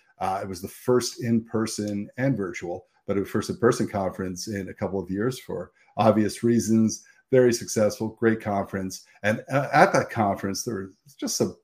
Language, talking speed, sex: English, 165 wpm, male